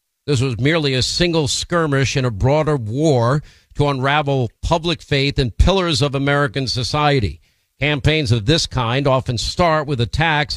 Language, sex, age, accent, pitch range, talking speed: English, male, 50-69, American, 125-160 Hz, 155 wpm